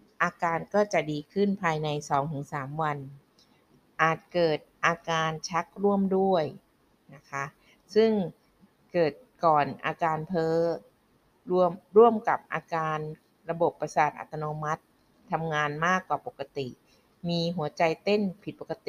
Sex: female